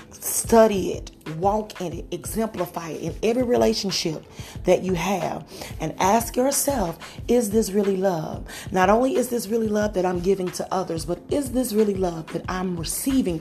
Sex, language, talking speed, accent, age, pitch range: female, English, 175 wpm, American, 30-49, 170-215 Hz